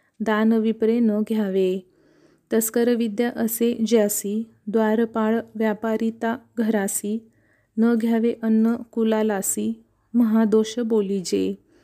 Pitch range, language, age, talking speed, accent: 215-235 Hz, Marathi, 30-49, 80 wpm, native